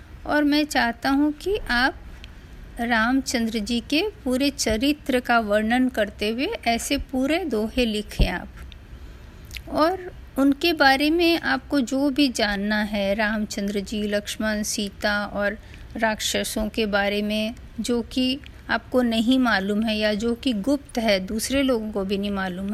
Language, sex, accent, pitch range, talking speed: Hindi, female, native, 210-275 Hz, 145 wpm